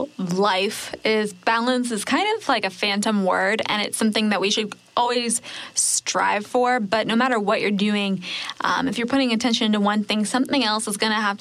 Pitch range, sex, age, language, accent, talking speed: 210-250 Hz, female, 10-29, English, American, 205 wpm